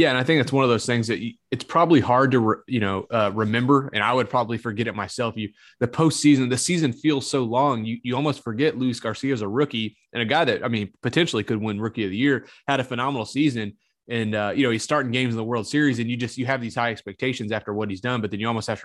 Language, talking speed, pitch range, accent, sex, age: English, 285 wpm, 115-135 Hz, American, male, 20-39